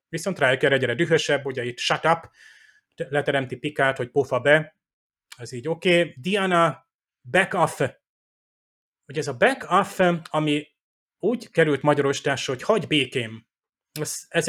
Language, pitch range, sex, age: Hungarian, 130-160 Hz, male, 30-49